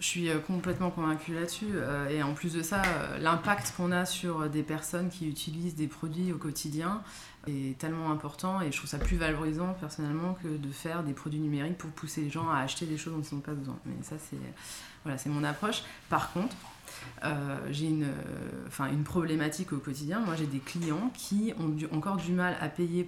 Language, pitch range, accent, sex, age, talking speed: French, 155-180 Hz, French, female, 20-39, 210 wpm